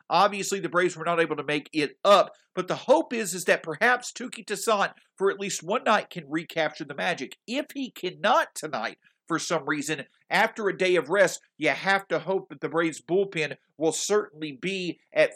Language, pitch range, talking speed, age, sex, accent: English, 160-210 Hz, 205 wpm, 50-69, male, American